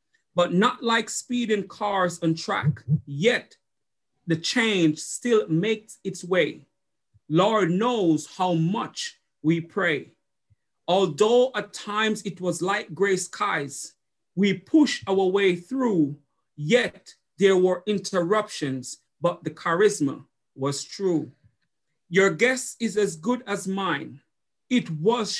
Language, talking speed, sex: English, 120 wpm, male